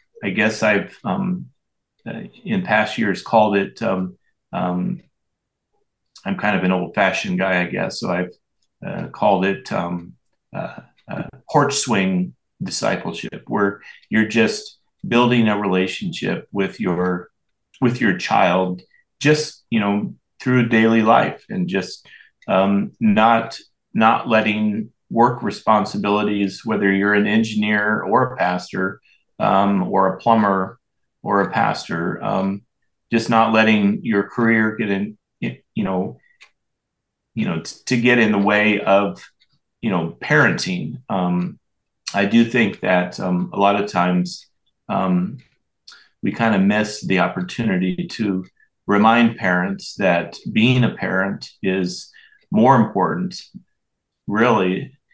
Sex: male